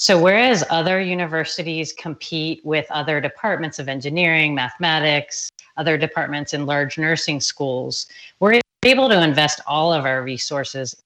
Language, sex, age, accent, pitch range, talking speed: English, female, 30-49, American, 145-170 Hz, 135 wpm